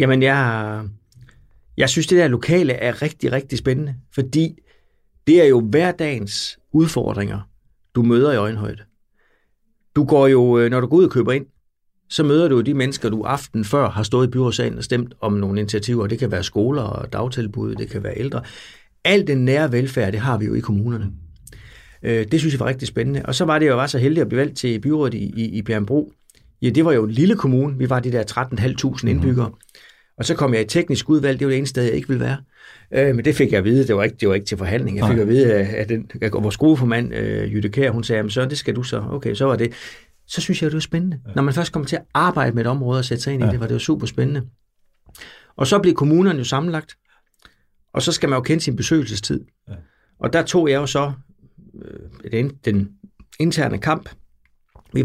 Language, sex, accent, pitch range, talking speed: Danish, male, native, 110-140 Hz, 230 wpm